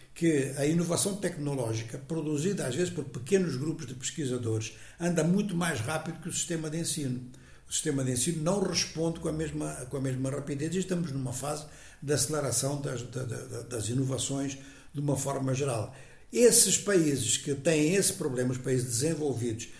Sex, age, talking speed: male, 60-79, 165 wpm